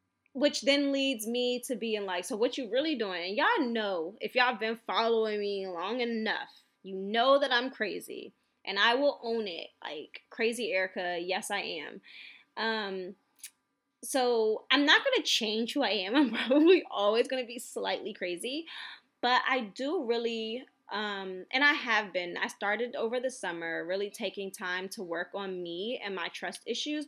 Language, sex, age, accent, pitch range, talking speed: English, female, 10-29, American, 195-245 Hz, 180 wpm